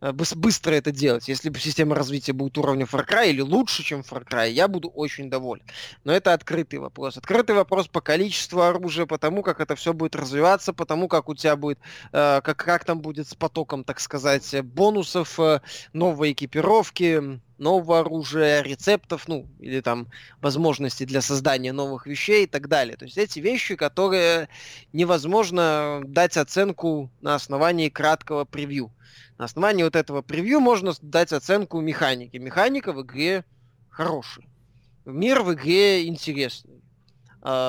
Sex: male